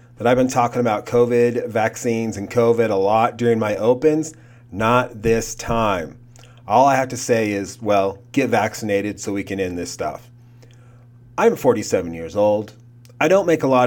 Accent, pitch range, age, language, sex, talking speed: American, 115-130 Hz, 30-49, English, male, 175 wpm